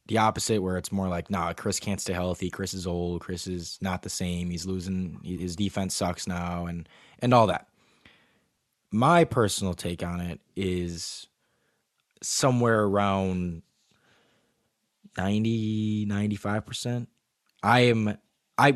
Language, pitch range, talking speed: English, 90-110 Hz, 140 wpm